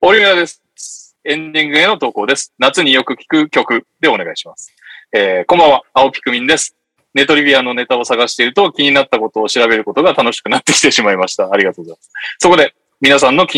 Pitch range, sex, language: 125-175 Hz, male, Japanese